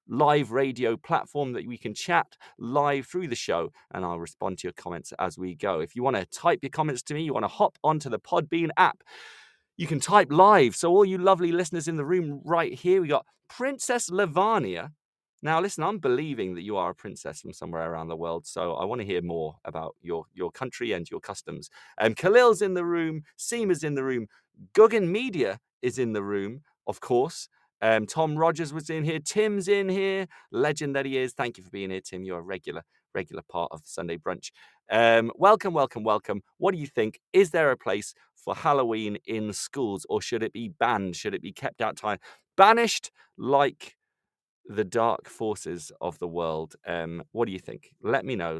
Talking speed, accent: 210 wpm, British